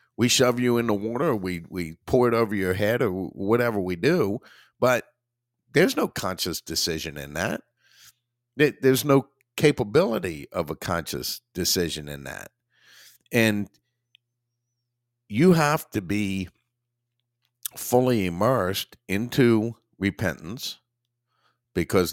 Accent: American